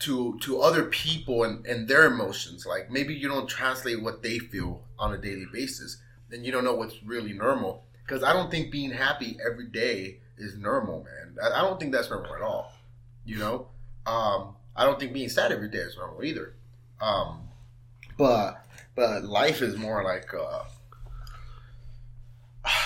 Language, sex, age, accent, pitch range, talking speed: English, male, 30-49, American, 120-140 Hz, 175 wpm